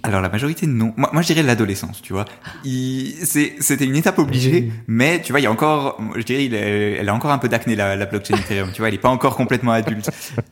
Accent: French